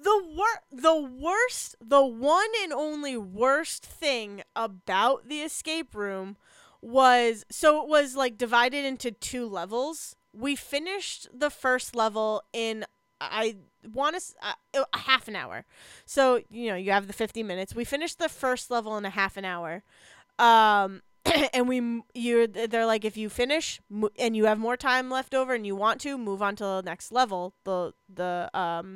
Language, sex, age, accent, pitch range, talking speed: English, female, 20-39, American, 215-280 Hz, 170 wpm